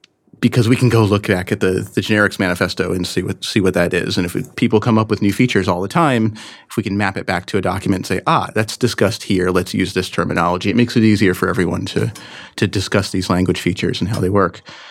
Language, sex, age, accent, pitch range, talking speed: English, male, 30-49, American, 95-120 Hz, 260 wpm